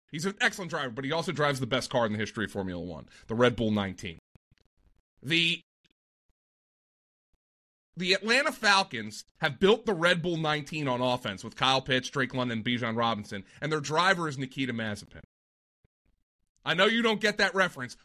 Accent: American